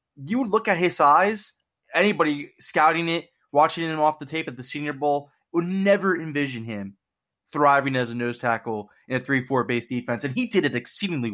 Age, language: 20-39, English